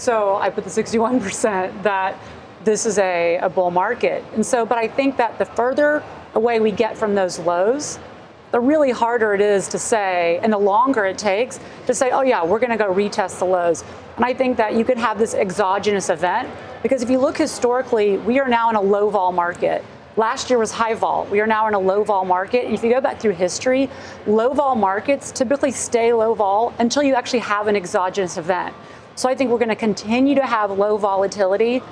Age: 30-49